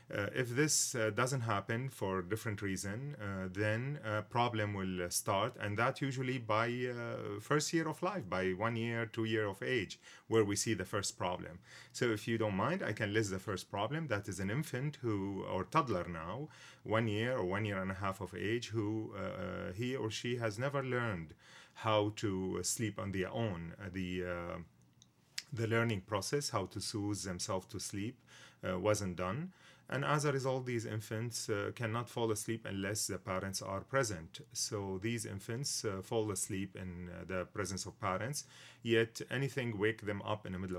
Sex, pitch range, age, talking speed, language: male, 95-120 Hz, 30-49, 190 wpm, English